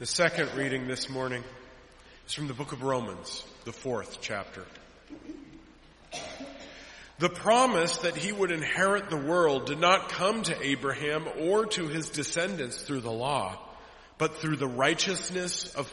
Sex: male